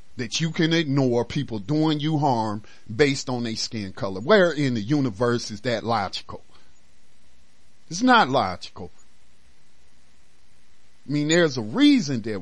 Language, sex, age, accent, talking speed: English, male, 40-59, American, 140 wpm